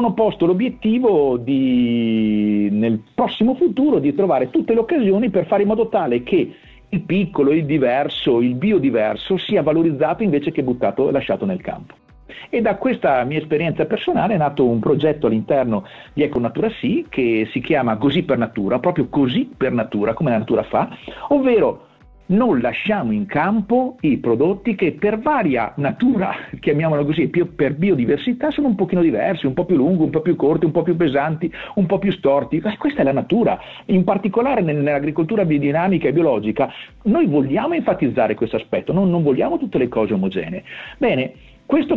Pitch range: 150-225 Hz